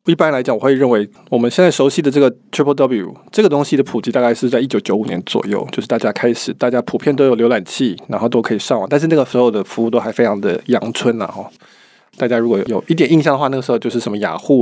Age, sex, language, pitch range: 20-39, male, Chinese, 120-155 Hz